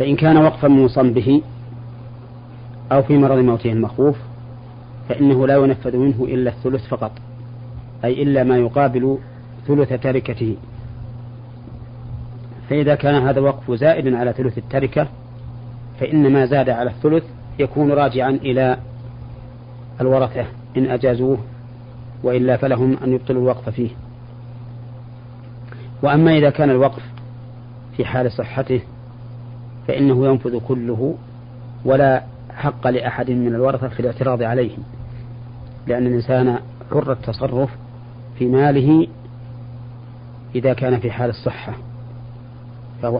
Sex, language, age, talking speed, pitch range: male, Arabic, 40-59, 110 wpm, 120-130 Hz